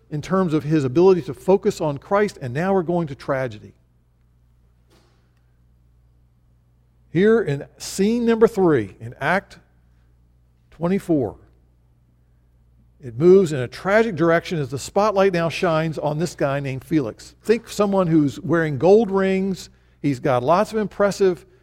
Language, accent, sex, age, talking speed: English, American, male, 50-69, 140 wpm